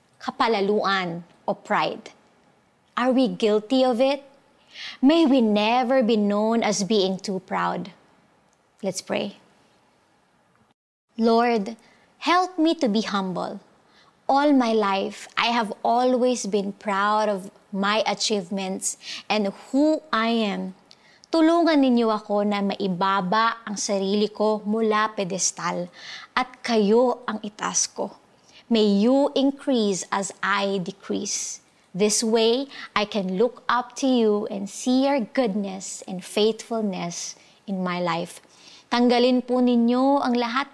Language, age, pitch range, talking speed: Filipino, 20-39, 200-255 Hz, 120 wpm